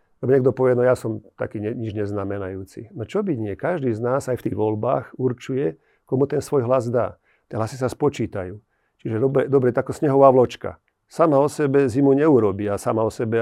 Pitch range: 110-135 Hz